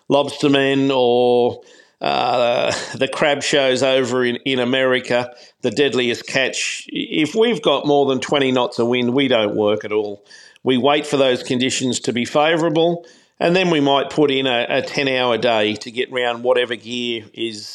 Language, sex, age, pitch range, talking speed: English, male, 50-69, 130-160 Hz, 170 wpm